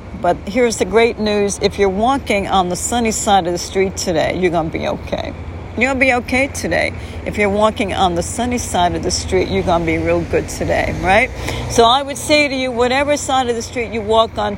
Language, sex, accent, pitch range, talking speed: English, female, American, 165-230 Hz, 235 wpm